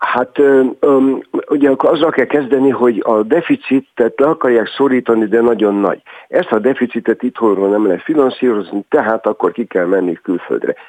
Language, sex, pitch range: Hungarian, male, 105-135 Hz